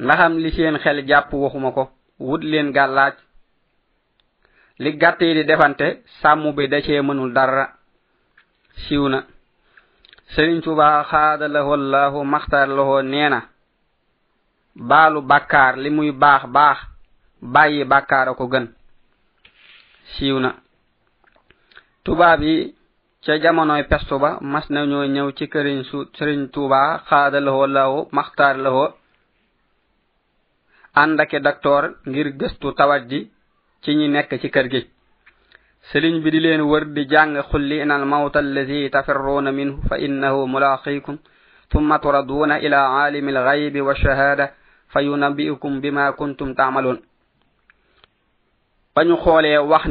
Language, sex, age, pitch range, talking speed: French, male, 20-39, 140-150 Hz, 110 wpm